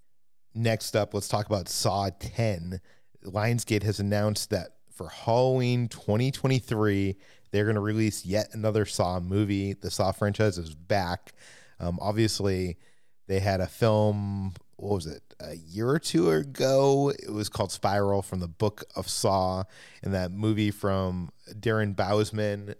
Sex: male